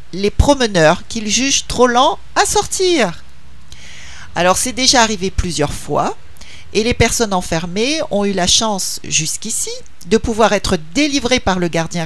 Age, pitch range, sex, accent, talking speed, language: 50-69, 170-255 Hz, male, French, 150 wpm, French